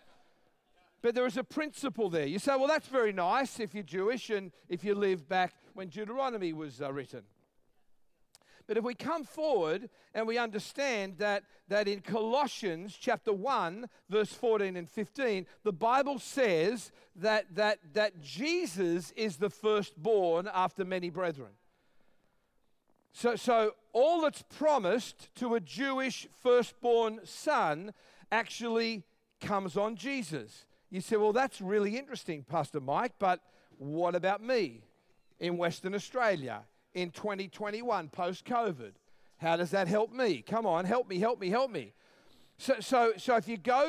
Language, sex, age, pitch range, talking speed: English, male, 50-69, 175-235 Hz, 145 wpm